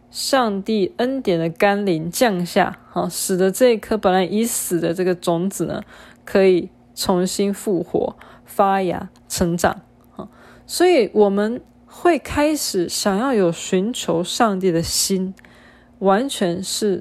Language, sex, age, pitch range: Chinese, female, 20-39, 170-225 Hz